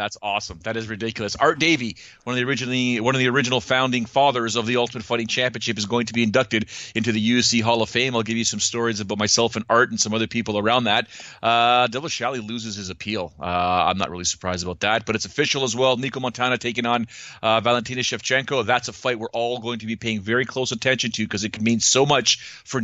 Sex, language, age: male, English, 40-59